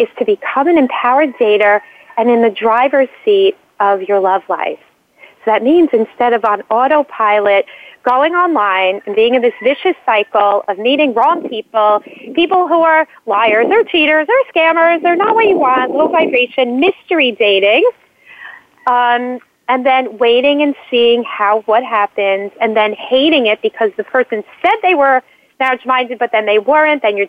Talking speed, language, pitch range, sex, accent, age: 165 wpm, English, 215-325 Hz, female, American, 30-49